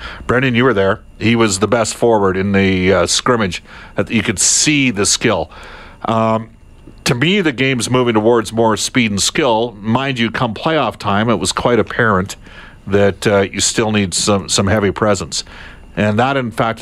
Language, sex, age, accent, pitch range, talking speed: English, male, 50-69, American, 100-130 Hz, 180 wpm